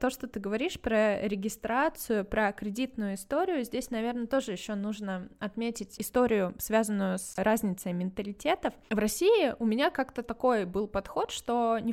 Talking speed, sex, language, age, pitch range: 150 wpm, female, Russian, 20-39, 200-255 Hz